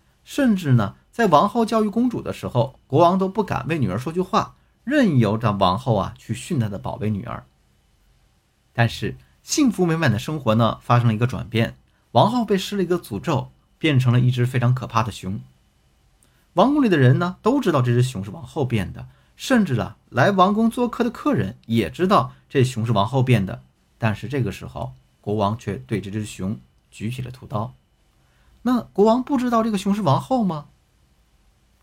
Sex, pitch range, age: male, 105-175 Hz, 50-69